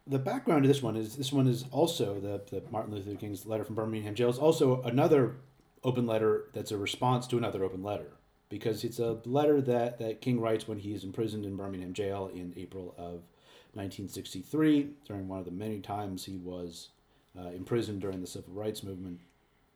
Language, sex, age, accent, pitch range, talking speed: English, male, 40-59, American, 100-125 Hz, 195 wpm